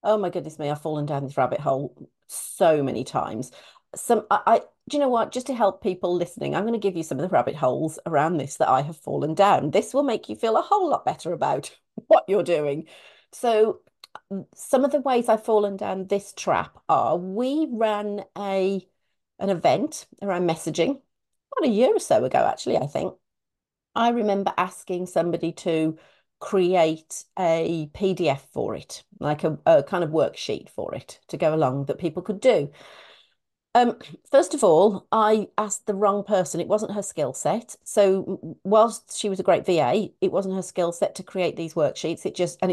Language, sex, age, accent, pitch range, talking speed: English, female, 40-59, British, 180-245 Hz, 195 wpm